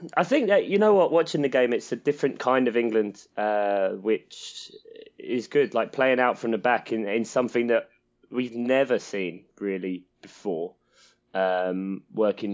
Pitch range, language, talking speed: 100-125 Hz, English, 170 wpm